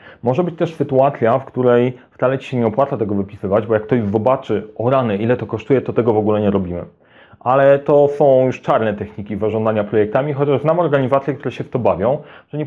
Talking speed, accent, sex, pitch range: 220 wpm, native, male, 110-145 Hz